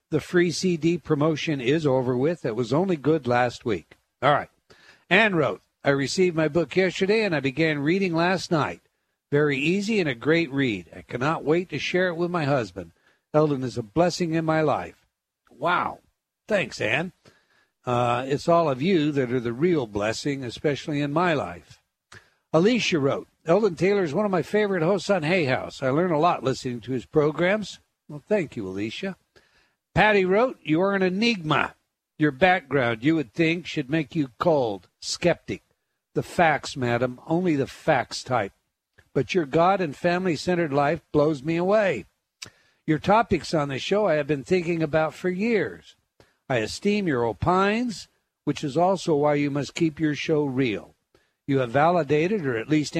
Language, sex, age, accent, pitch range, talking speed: English, male, 60-79, American, 140-180 Hz, 175 wpm